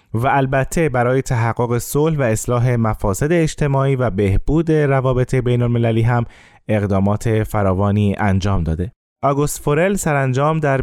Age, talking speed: 20-39, 125 wpm